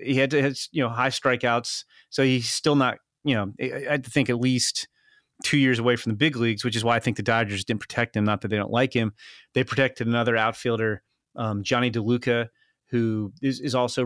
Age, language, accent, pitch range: 30-49, English, American, 120-150 Hz